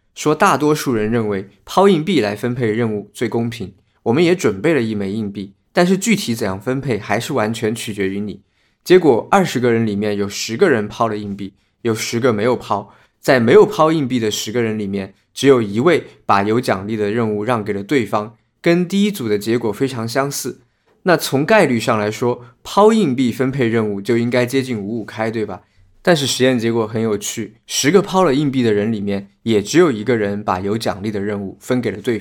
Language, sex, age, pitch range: Chinese, male, 20-39, 105-130 Hz